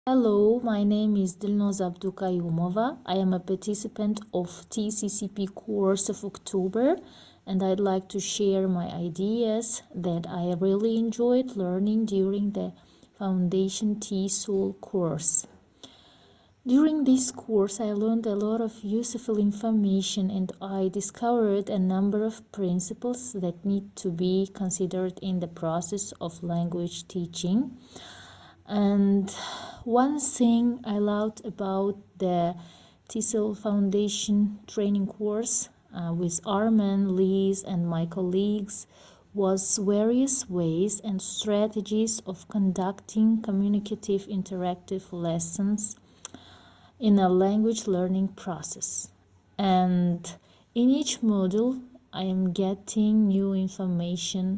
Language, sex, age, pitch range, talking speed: English, female, 30-49, 185-215 Hz, 110 wpm